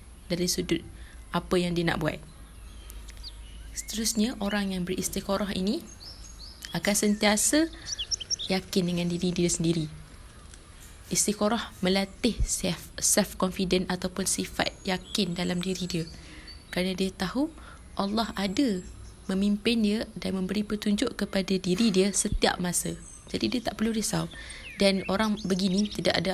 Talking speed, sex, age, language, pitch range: 125 wpm, female, 20-39, Malay, 165-200 Hz